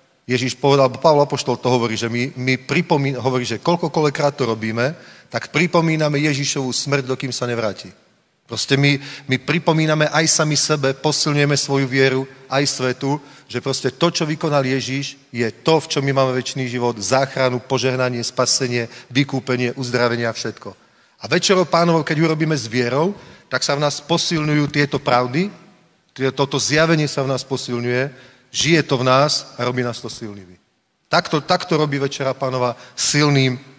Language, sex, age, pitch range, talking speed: Slovak, male, 40-59, 125-150 Hz, 165 wpm